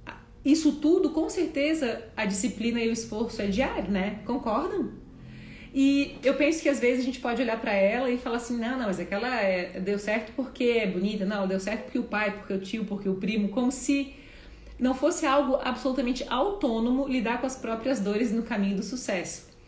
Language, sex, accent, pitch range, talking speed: Portuguese, female, Brazilian, 210-260 Hz, 200 wpm